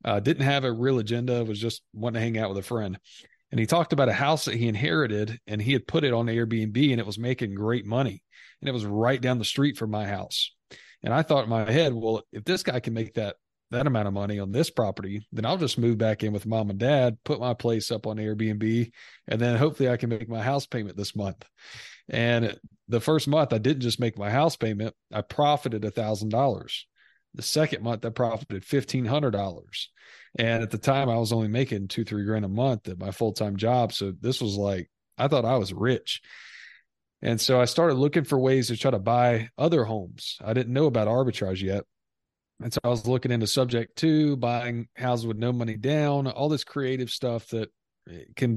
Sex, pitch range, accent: male, 110-130 Hz, American